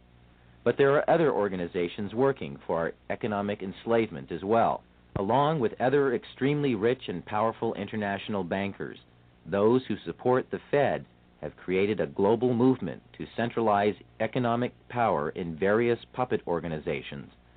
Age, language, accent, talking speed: 50-69, English, American, 130 wpm